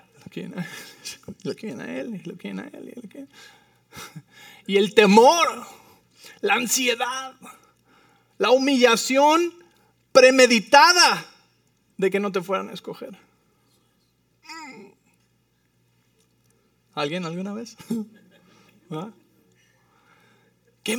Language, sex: English, male